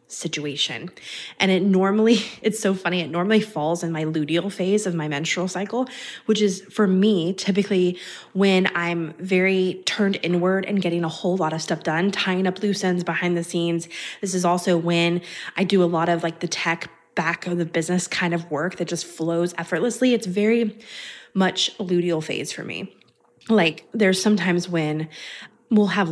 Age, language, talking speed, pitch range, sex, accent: 20-39, English, 180 wpm, 160-195 Hz, female, American